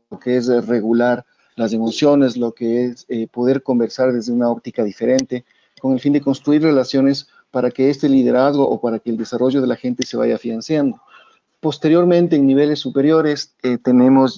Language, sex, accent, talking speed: Spanish, male, Mexican, 180 wpm